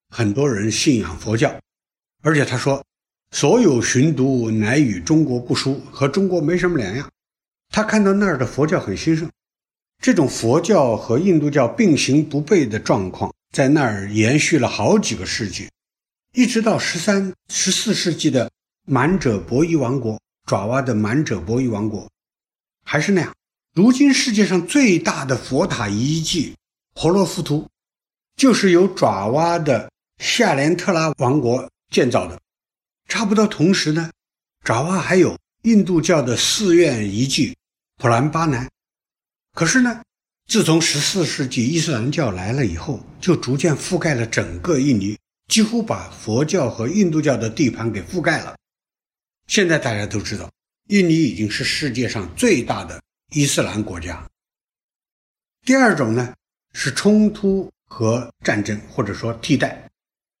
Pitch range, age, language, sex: 120-180 Hz, 60-79, English, male